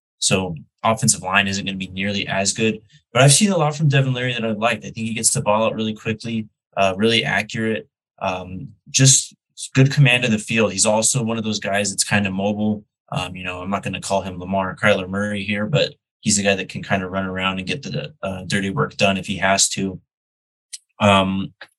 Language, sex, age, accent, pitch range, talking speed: English, male, 20-39, American, 100-125 Hz, 235 wpm